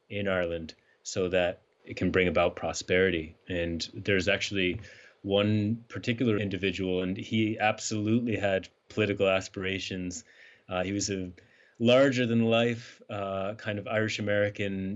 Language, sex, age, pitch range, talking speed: English, male, 30-49, 95-110 Hz, 130 wpm